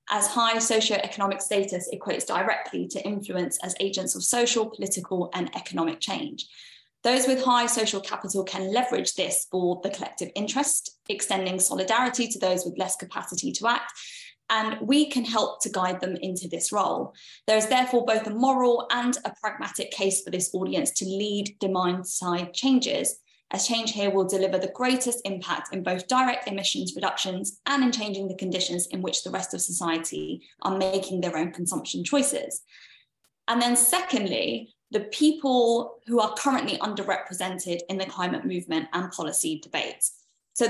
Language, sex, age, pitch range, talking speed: English, female, 20-39, 185-240 Hz, 165 wpm